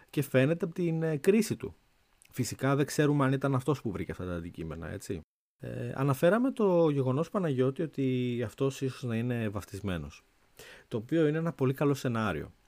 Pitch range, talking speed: 95-140 Hz, 165 wpm